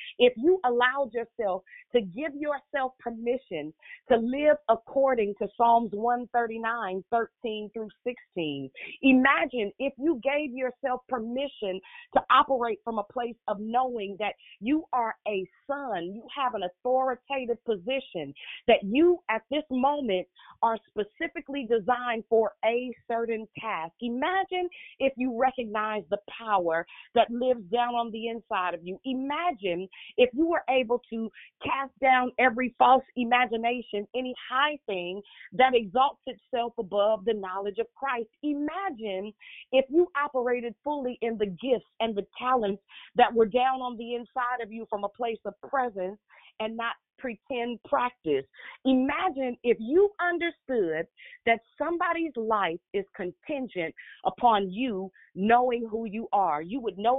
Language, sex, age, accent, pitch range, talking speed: English, female, 40-59, American, 215-260 Hz, 140 wpm